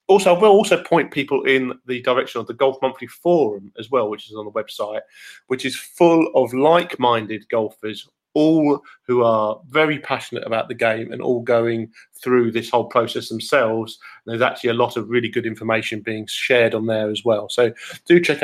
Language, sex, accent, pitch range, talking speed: English, male, British, 115-155 Hz, 195 wpm